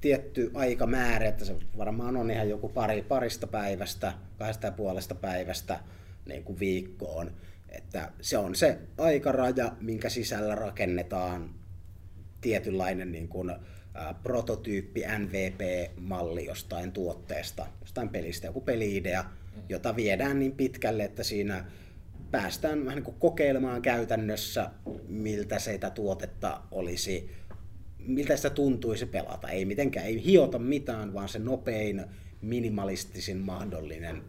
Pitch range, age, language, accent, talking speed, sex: 95-115 Hz, 30-49, Finnish, native, 115 wpm, male